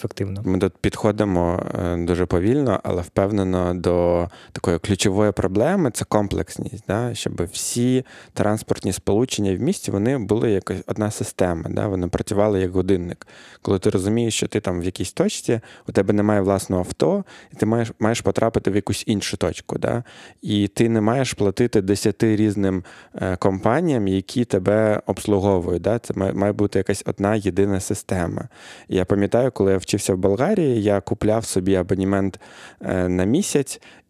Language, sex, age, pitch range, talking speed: Ukrainian, male, 20-39, 95-115 Hz, 155 wpm